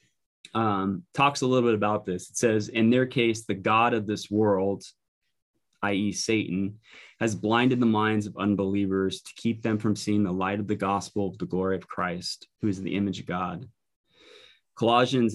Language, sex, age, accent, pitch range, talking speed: English, male, 20-39, American, 100-120 Hz, 185 wpm